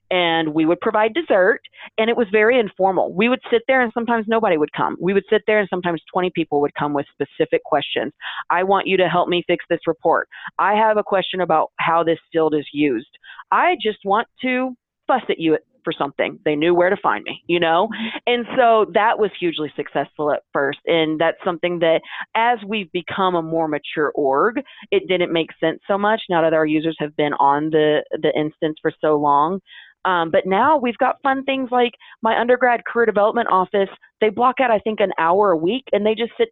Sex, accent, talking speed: female, American, 215 wpm